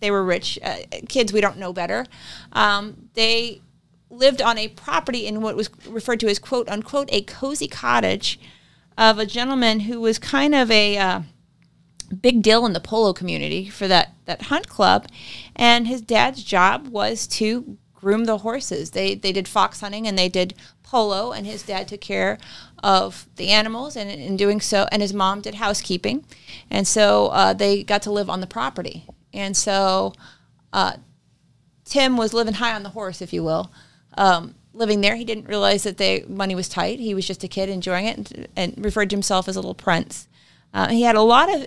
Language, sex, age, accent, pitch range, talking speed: English, female, 30-49, American, 190-225 Hz, 195 wpm